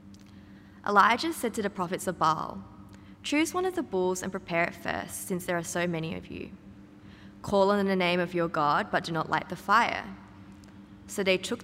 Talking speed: 200 wpm